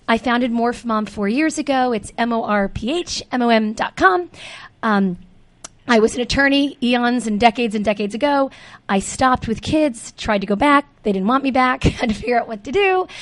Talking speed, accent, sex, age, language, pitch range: 225 wpm, American, female, 30-49, English, 225-270 Hz